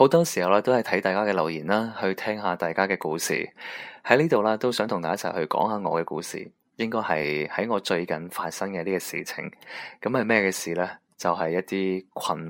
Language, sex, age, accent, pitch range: Chinese, male, 20-39, native, 85-105 Hz